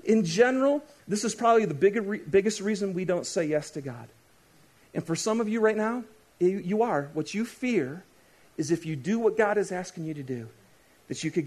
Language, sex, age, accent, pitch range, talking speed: English, male, 40-59, American, 135-220 Hz, 215 wpm